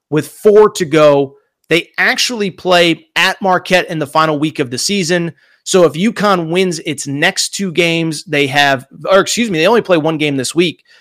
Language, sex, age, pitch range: English, male, 30-49, 155-215 Hz